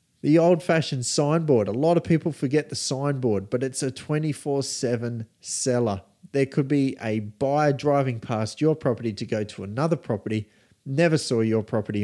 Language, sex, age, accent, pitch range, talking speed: English, male, 30-49, Australian, 110-145 Hz, 165 wpm